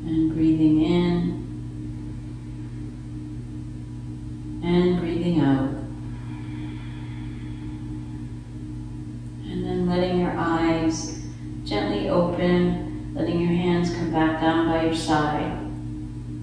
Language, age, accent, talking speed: English, 40-59, American, 80 wpm